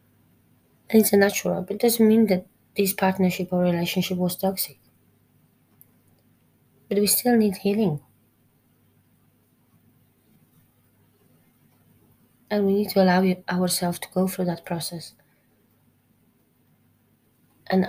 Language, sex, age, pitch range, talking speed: English, female, 20-39, 155-185 Hz, 105 wpm